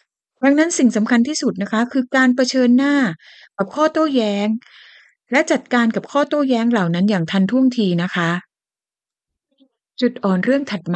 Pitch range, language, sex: 180-270 Hz, Thai, female